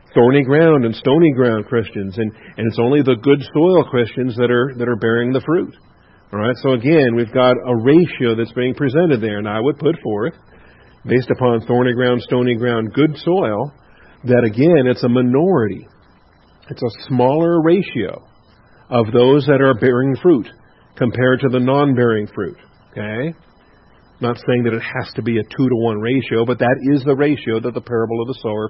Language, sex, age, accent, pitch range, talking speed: English, male, 50-69, American, 115-140 Hz, 185 wpm